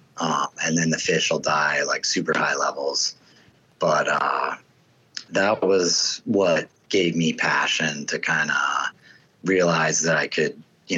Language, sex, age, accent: English, male, 30-49, American